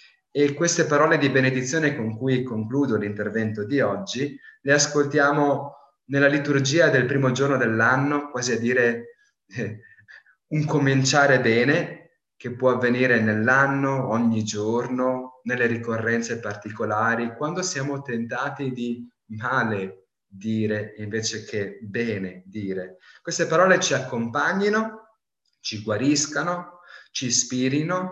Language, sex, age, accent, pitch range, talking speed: Italian, male, 30-49, native, 105-140 Hz, 110 wpm